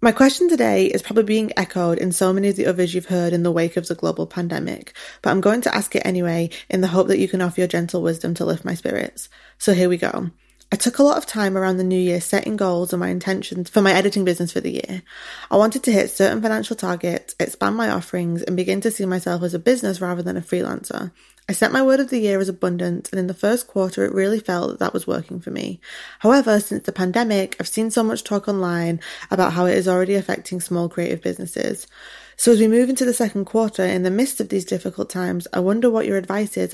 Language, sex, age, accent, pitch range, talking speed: English, female, 20-39, British, 180-215 Hz, 250 wpm